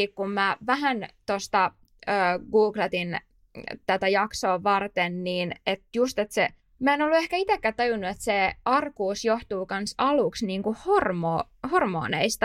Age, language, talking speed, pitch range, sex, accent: 20-39, Finnish, 135 wpm, 190-225 Hz, female, native